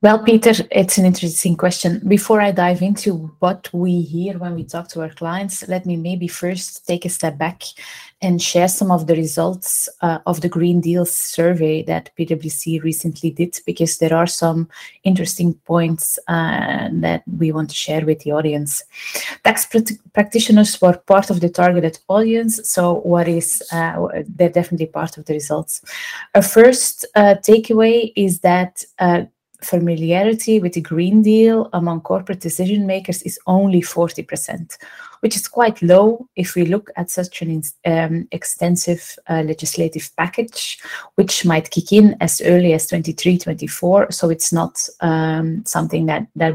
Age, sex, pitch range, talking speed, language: 20-39, female, 165-190 Hz, 165 wpm, English